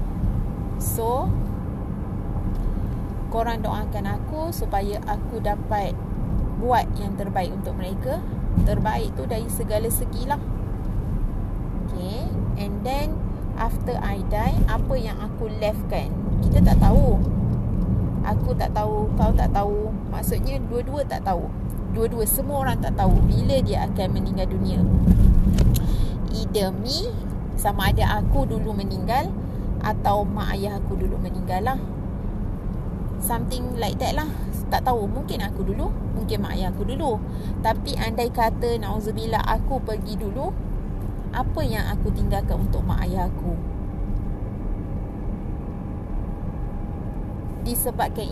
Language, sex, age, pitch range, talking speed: Malay, female, 20-39, 95-105 Hz, 120 wpm